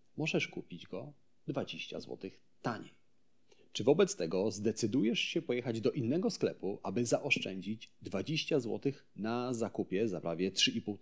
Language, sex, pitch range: Polish, male, 95-135 Hz